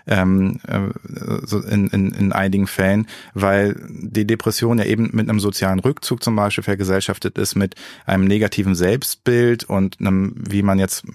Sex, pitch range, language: male, 95-115 Hz, German